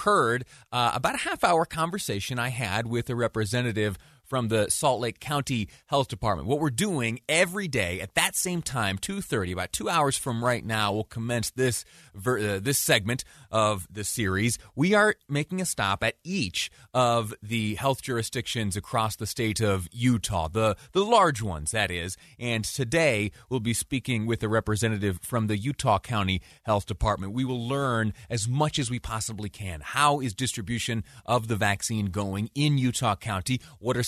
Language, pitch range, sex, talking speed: English, 110-140 Hz, male, 180 wpm